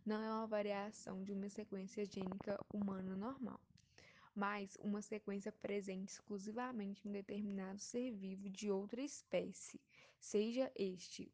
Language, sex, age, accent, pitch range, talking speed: Portuguese, female, 10-29, Brazilian, 195-215 Hz, 130 wpm